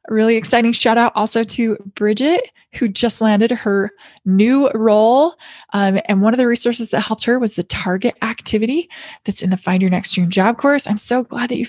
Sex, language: female, English